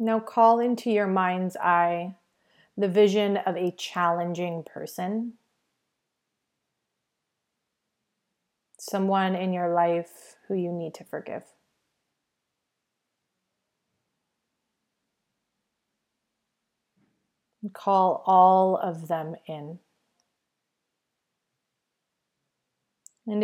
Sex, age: female, 30-49